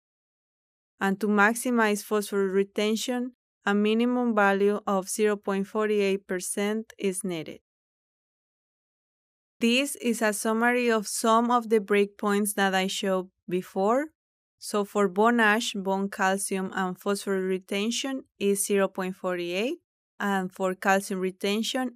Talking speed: 110 wpm